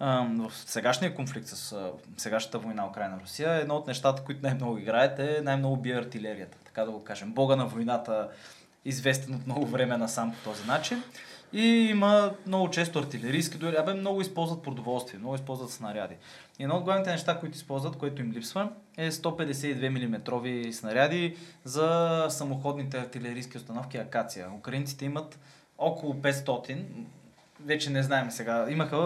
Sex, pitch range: male, 120-160 Hz